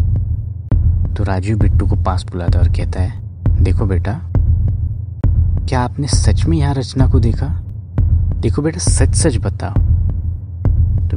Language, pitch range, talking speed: Hindi, 90-105 Hz, 140 wpm